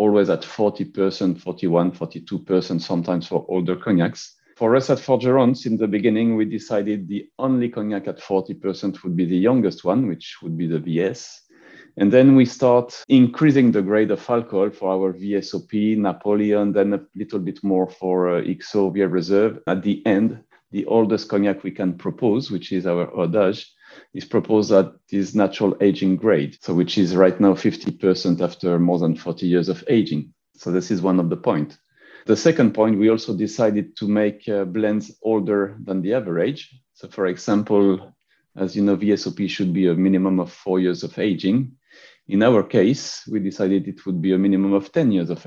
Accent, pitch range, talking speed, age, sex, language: French, 90-105 Hz, 185 wpm, 40-59, male, English